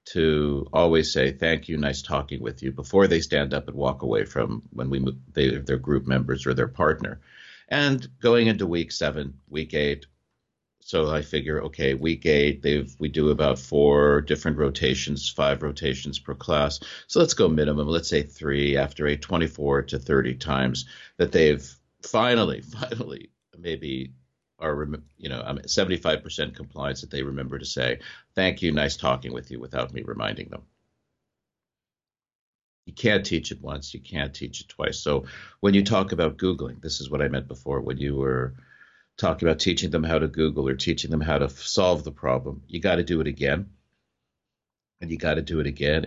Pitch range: 70-85 Hz